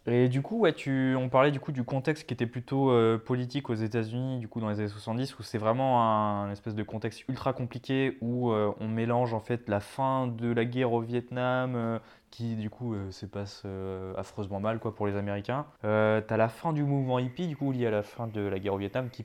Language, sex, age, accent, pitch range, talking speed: French, male, 20-39, French, 105-125 Hz, 240 wpm